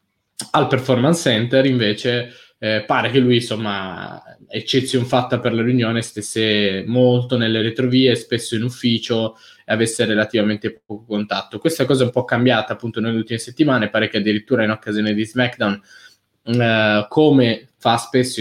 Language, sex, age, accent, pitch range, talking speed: Italian, male, 20-39, native, 110-130 Hz, 150 wpm